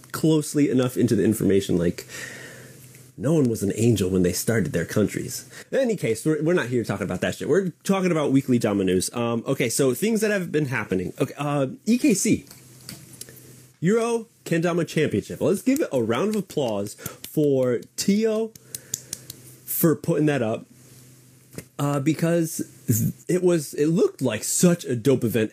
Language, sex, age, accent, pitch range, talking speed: English, male, 30-49, American, 125-175 Hz, 165 wpm